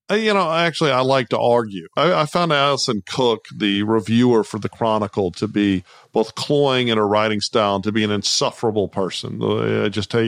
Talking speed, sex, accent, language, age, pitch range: 200 wpm, male, American, English, 40-59, 105-130 Hz